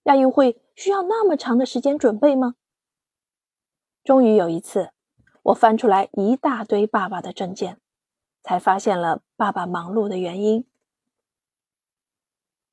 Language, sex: Chinese, female